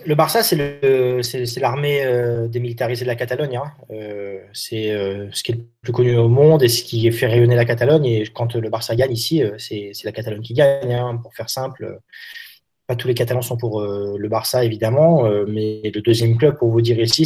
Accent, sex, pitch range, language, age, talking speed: French, male, 115-150 Hz, French, 20-39, 235 wpm